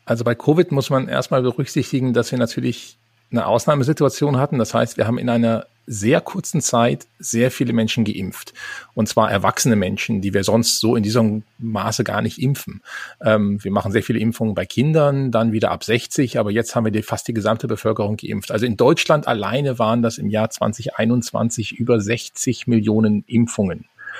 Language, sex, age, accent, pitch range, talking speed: German, male, 40-59, German, 110-140 Hz, 180 wpm